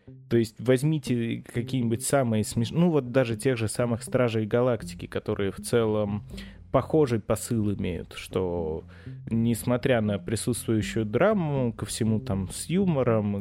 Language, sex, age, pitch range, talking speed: Russian, male, 20-39, 105-125 Hz, 135 wpm